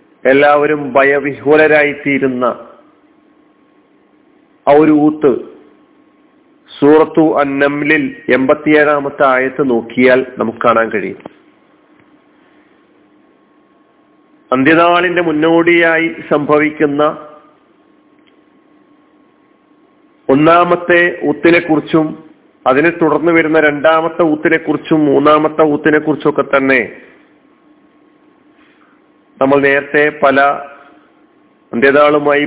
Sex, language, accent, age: male, Malayalam, native, 40-59